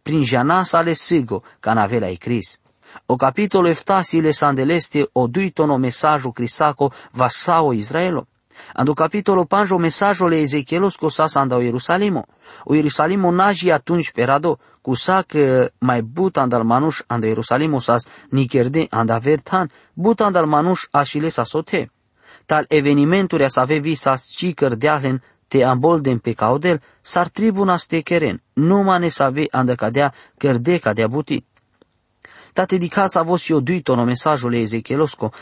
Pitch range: 130-175 Hz